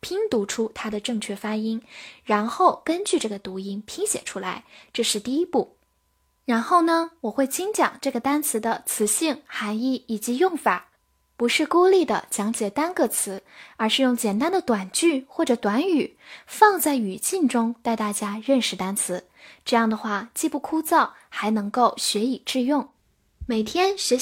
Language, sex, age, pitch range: Chinese, female, 10-29, 215-300 Hz